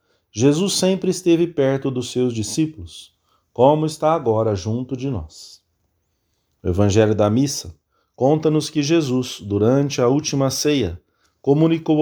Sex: male